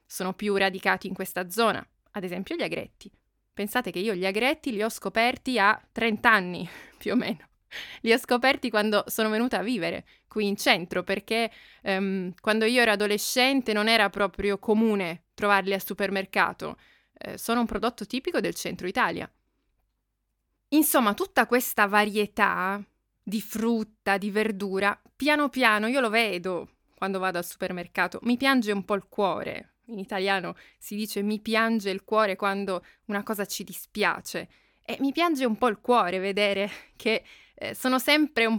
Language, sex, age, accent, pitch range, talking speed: Italian, female, 20-39, native, 195-250 Hz, 165 wpm